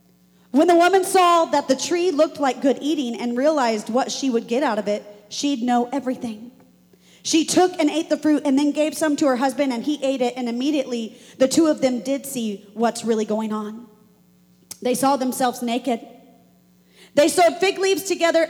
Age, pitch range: 40-59, 255-340 Hz